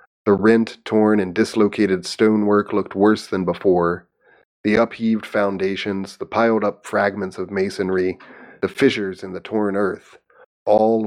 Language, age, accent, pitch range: English, 40-59, American, 95-110 Hz